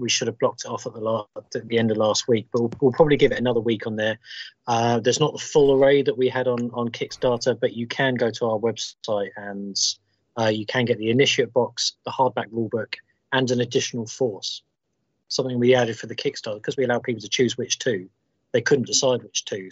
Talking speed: 230 wpm